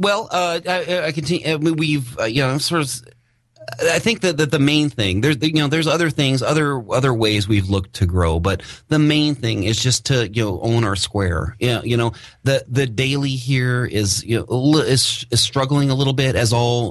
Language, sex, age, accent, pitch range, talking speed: English, male, 30-49, American, 95-125 Hz, 230 wpm